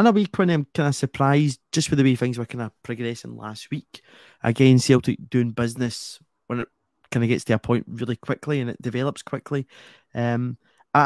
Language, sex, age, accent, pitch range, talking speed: English, male, 20-39, British, 115-130 Hz, 205 wpm